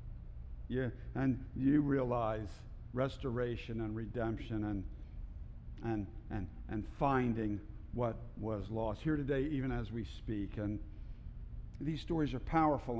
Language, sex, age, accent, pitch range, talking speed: English, male, 60-79, American, 110-145 Hz, 120 wpm